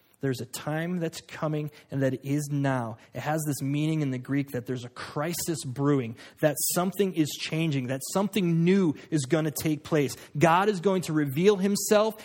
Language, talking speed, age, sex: English, 190 wpm, 20-39, male